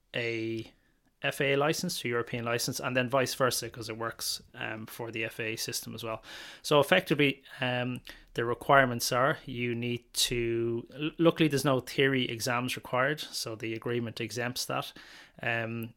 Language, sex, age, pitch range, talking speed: English, male, 20-39, 115-130 Hz, 155 wpm